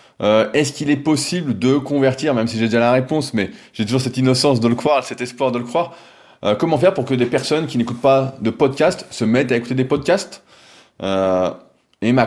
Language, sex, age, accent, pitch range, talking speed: French, male, 20-39, French, 110-130 Hz, 230 wpm